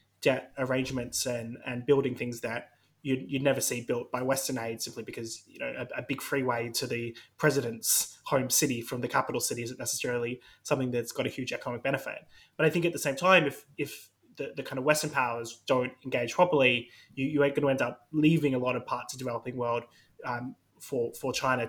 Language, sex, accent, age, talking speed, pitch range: English, male, Australian, 20-39, 220 wpm, 115-135 Hz